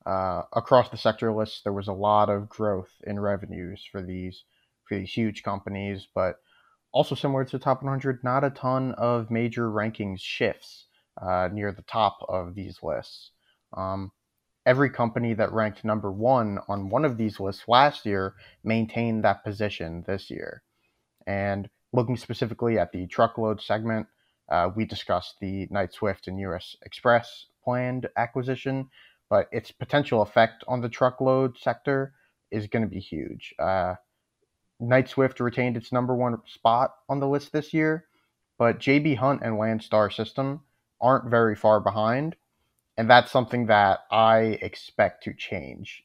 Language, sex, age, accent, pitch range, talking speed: English, male, 30-49, American, 100-125 Hz, 160 wpm